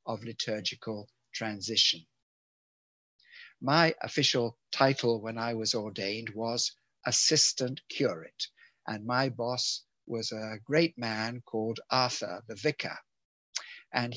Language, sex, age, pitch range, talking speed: English, male, 60-79, 110-125 Hz, 105 wpm